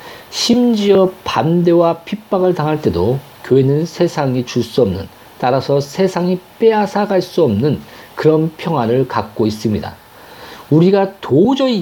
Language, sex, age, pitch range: Korean, male, 50-69, 125-200 Hz